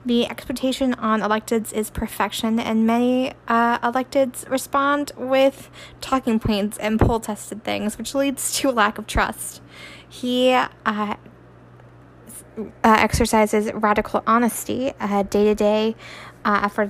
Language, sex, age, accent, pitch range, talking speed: English, female, 10-29, American, 210-245 Hz, 115 wpm